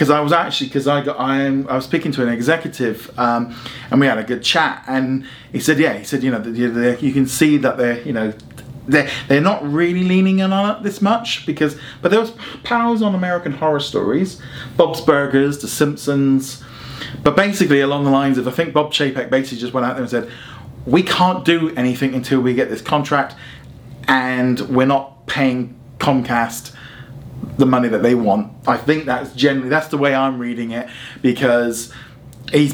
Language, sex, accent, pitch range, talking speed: English, male, British, 125-150 Hz, 200 wpm